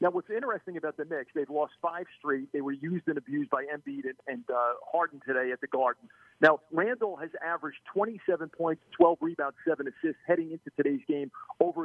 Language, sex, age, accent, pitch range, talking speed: English, male, 50-69, American, 145-195 Hz, 205 wpm